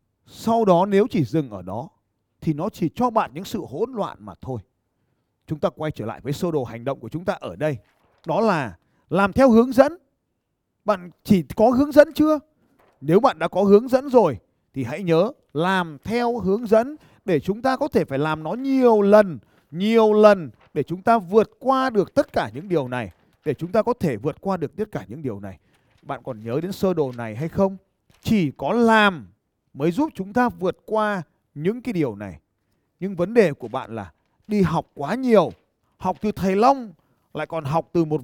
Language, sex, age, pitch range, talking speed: Vietnamese, male, 20-39, 140-225 Hz, 215 wpm